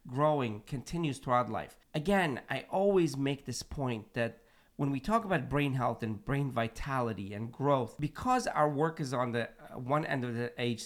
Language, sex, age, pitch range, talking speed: English, male, 40-59, 120-160 Hz, 180 wpm